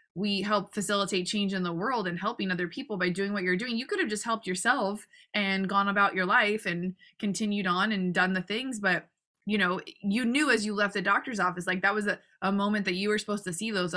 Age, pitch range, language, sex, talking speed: 20-39, 180-210 Hz, English, female, 250 wpm